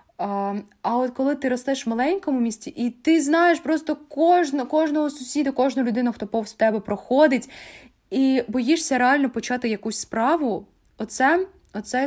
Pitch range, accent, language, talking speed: 200-255 Hz, native, Ukrainian, 145 wpm